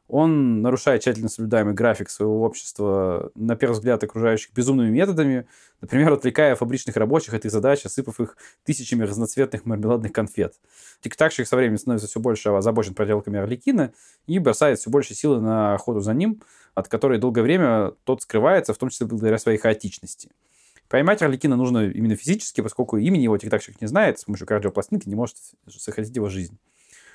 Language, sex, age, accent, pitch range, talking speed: Russian, male, 20-39, native, 105-135 Hz, 165 wpm